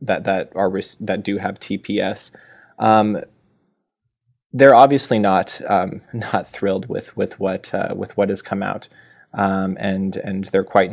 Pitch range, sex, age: 95-100 Hz, male, 20-39